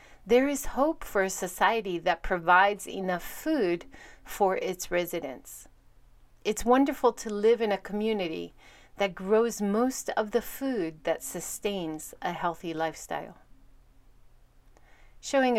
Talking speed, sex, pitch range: 125 wpm, female, 180-225 Hz